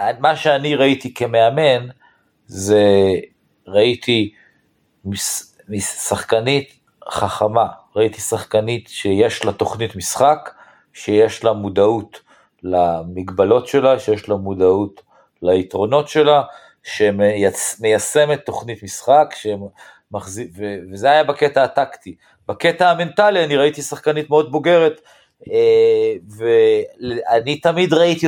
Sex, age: male, 50-69